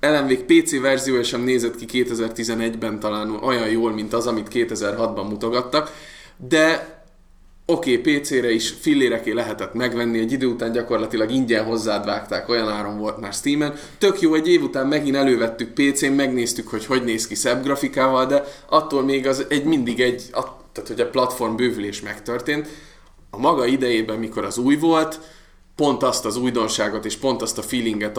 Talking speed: 170 wpm